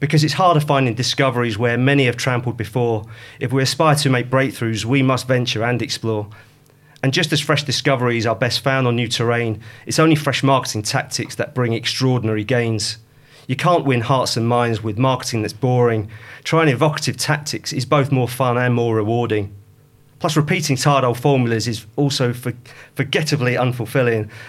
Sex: male